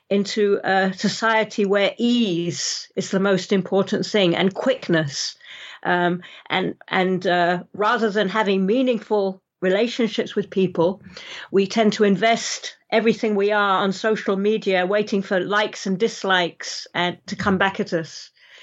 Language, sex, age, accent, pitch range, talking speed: English, female, 50-69, British, 185-220 Hz, 140 wpm